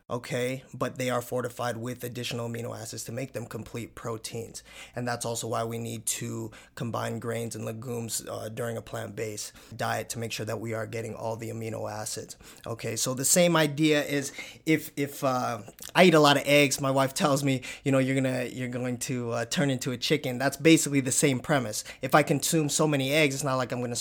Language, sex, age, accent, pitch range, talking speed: English, male, 20-39, American, 120-150 Hz, 220 wpm